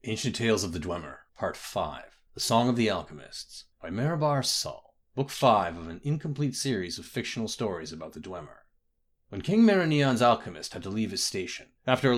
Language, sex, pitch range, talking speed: English, male, 110-150 Hz, 185 wpm